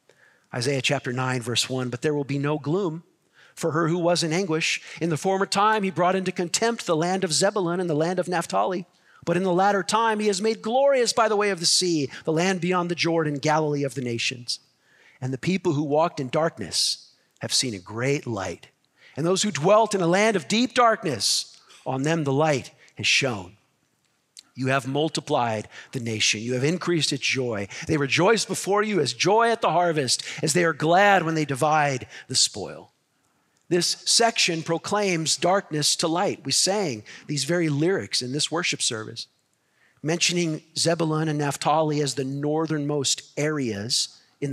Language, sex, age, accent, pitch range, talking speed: English, male, 50-69, American, 135-175 Hz, 185 wpm